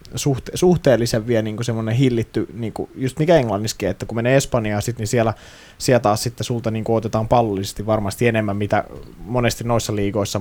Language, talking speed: Finnish, 175 wpm